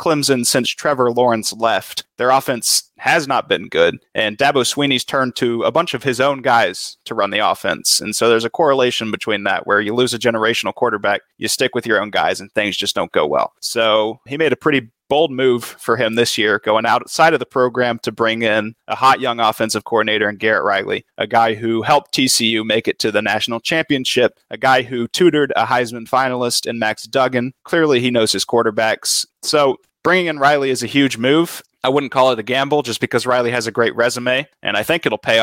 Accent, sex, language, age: American, male, English, 30-49